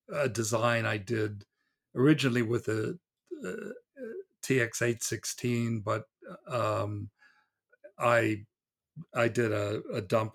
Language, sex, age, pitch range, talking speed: English, male, 50-69, 110-135 Hz, 105 wpm